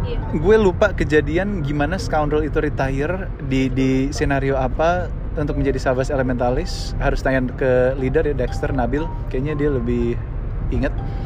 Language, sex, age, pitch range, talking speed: Indonesian, male, 20-39, 115-140 Hz, 140 wpm